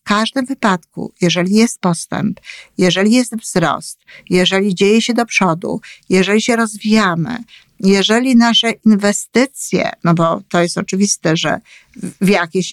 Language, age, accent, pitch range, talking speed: Polish, 50-69, native, 170-215 Hz, 130 wpm